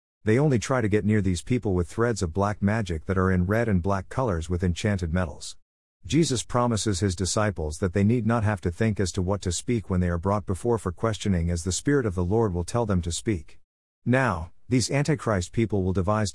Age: 50-69